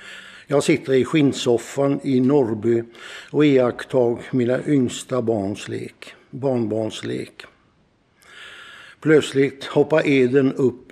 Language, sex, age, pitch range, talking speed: Swedish, male, 60-79, 120-150 Hz, 90 wpm